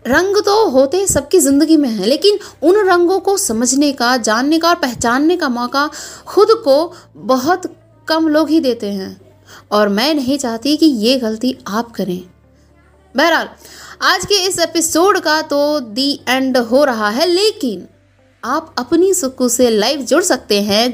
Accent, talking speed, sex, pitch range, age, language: native, 165 wpm, female, 225-320 Hz, 20-39, Hindi